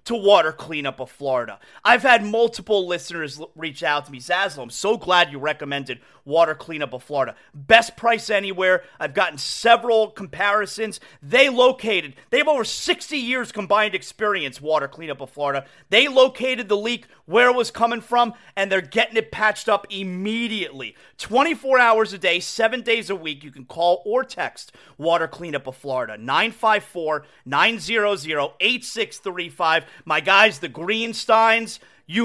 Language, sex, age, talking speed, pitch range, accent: English, male, 30-49, 150 wpm, 165-230 Hz, American